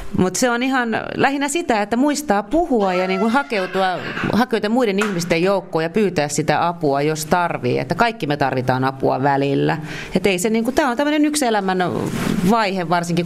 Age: 30-49